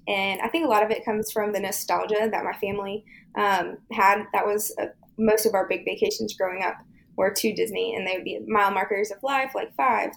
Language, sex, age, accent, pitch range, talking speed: English, female, 20-39, American, 200-225 Hz, 230 wpm